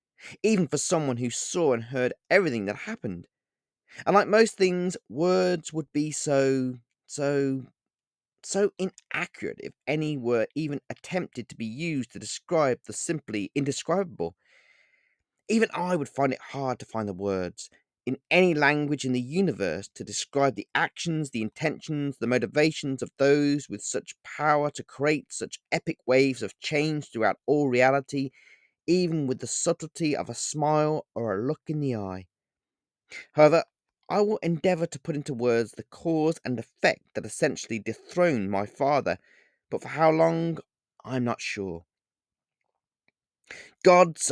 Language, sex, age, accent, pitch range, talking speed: English, male, 30-49, British, 115-160 Hz, 150 wpm